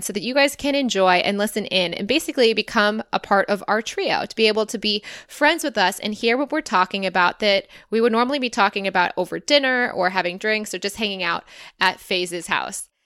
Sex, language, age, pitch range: female, English, 20-39, 190-230 Hz